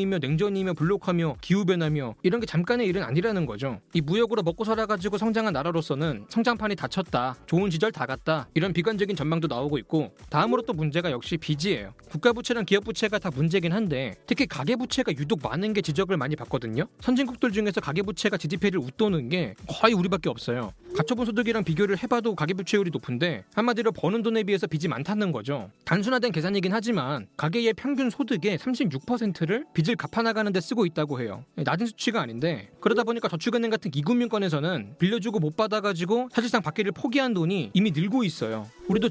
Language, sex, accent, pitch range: Korean, male, native, 160-225 Hz